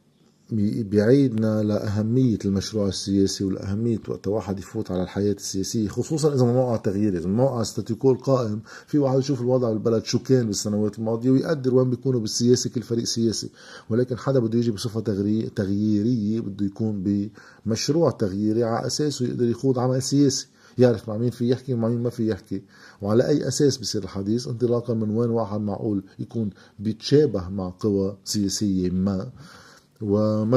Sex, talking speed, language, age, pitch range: male, 150 wpm, Arabic, 50-69, 100-120 Hz